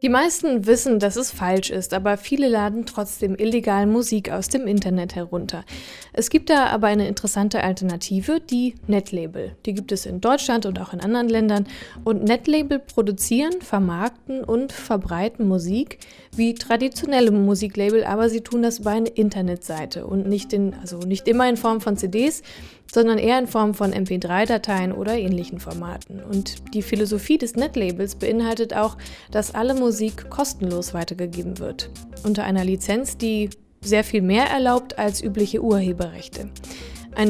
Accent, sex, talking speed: German, female, 155 wpm